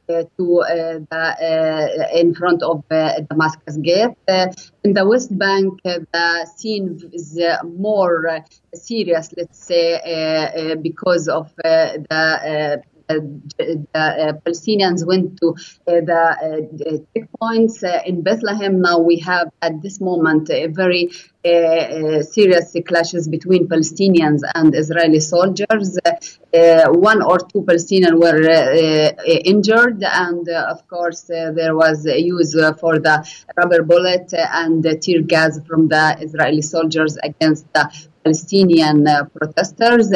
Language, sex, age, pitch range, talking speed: English, female, 30-49, 160-175 Hz, 145 wpm